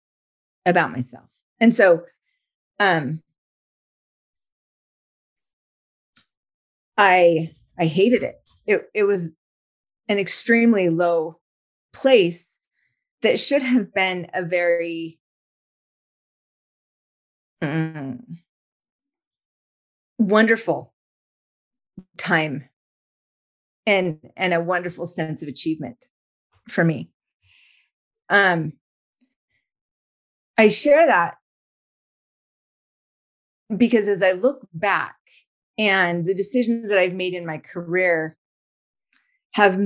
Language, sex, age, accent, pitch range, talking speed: English, female, 30-49, American, 155-200 Hz, 80 wpm